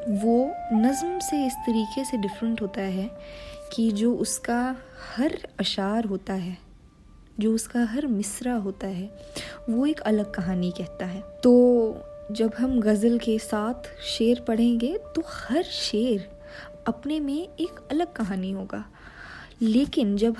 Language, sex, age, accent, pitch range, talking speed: Hindi, female, 20-39, native, 195-270 Hz, 140 wpm